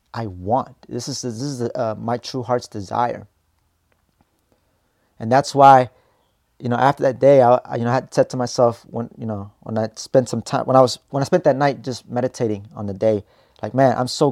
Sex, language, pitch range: male, English, 115-145 Hz